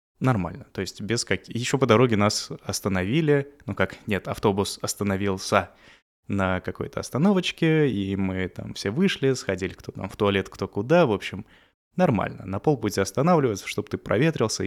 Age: 20-39